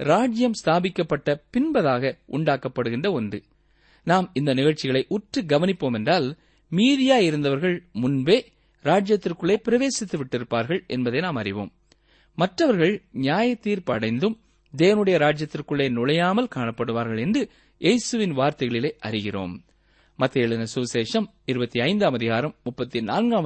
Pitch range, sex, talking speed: 125-210 Hz, male, 80 wpm